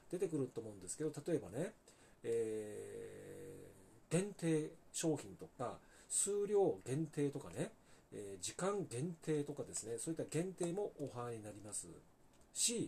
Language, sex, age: Japanese, male, 40-59